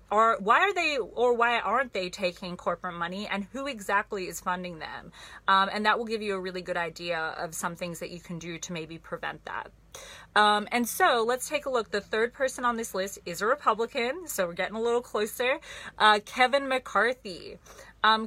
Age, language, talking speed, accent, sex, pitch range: 30-49, English, 205 wpm, American, female, 185-245 Hz